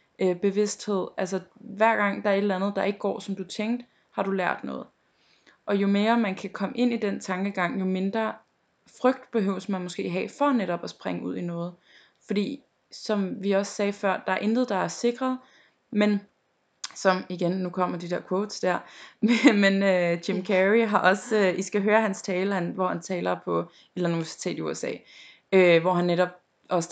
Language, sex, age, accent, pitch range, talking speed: Danish, female, 20-39, native, 180-215 Hz, 205 wpm